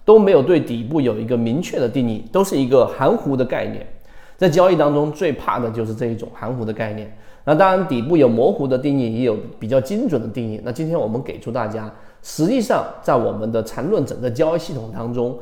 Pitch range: 115-165 Hz